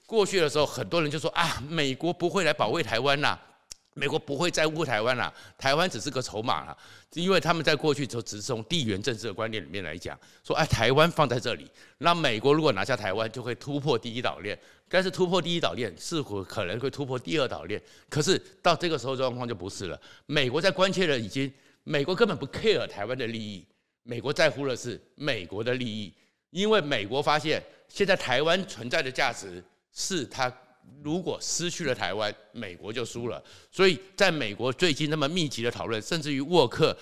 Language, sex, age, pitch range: Chinese, male, 50-69, 115-165 Hz